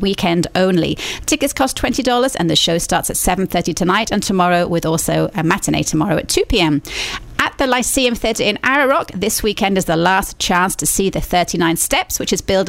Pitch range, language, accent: 175-240 Hz, English, British